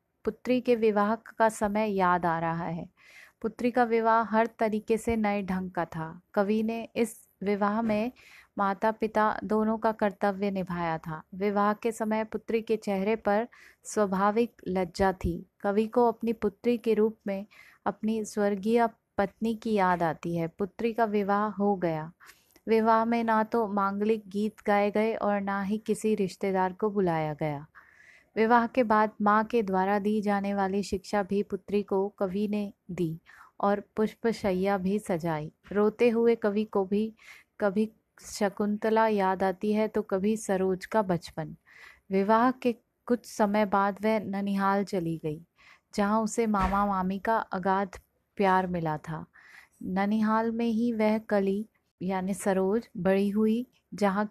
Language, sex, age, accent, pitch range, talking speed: Hindi, female, 30-49, native, 195-220 Hz, 155 wpm